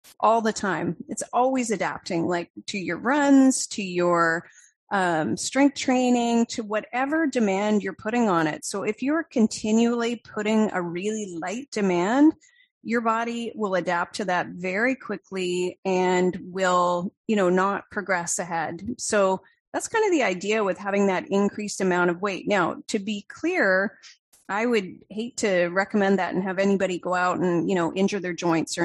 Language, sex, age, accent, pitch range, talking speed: English, female, 30-49, American, 180-235 Hz, 170 wpm